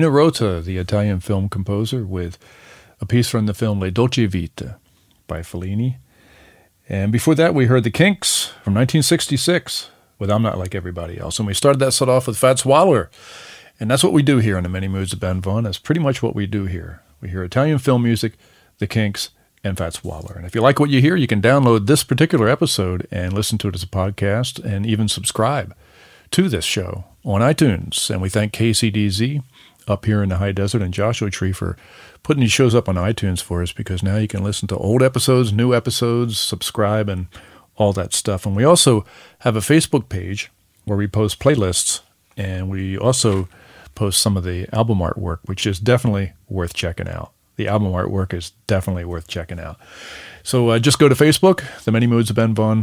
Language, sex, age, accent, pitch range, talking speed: English, male, 40-59, American, 95-125 Hz, 205 wpm